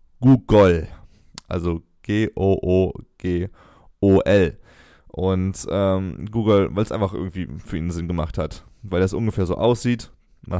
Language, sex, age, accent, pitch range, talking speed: German, male, 20-39, German, 90-110 Hz, 120 wpm